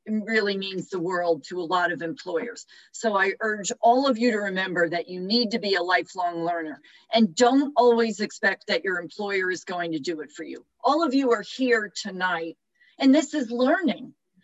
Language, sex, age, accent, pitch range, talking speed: English, female, 40-59, American, 180-245 Hz, 210 wpm